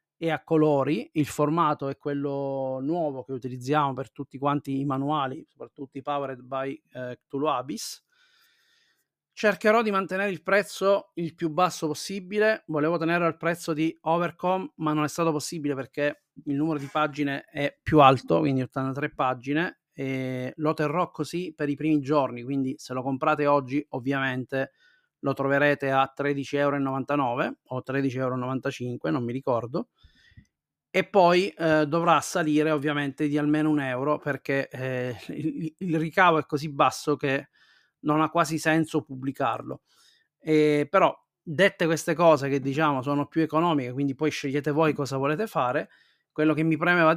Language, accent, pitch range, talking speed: Italian, native, 140-160 Hz, 155 wpm